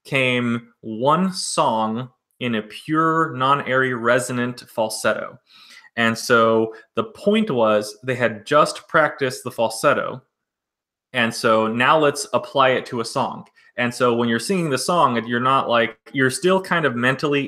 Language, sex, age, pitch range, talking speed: English, male, 20-39, 115-140 Hz, 155 wpm